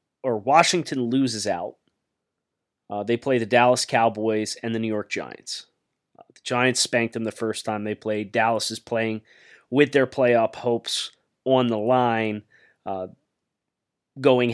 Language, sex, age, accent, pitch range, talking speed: English, male, 30-49, American, 110-135 Hz, 155 wpm